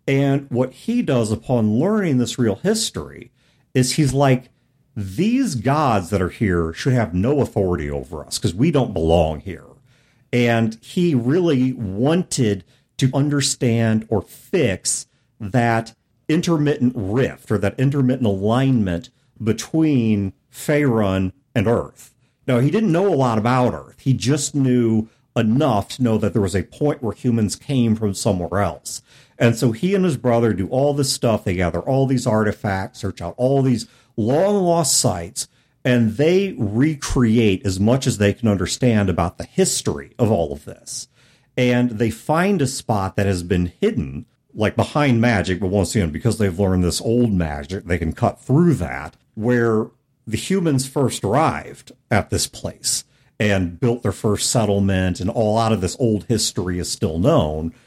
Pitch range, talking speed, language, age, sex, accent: 100-135 Hz, 165 wpm, English, 50-69, male, American